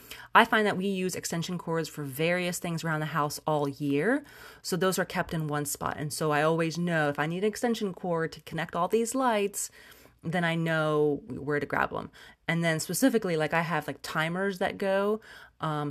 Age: 30-49